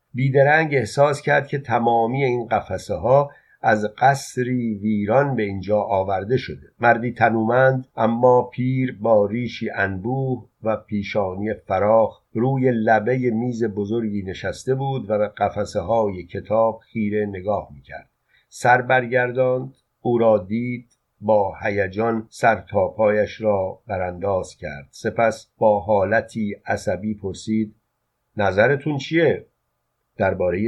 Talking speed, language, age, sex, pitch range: 110 wpm, Persian, 50-69, male, 105-130 Hz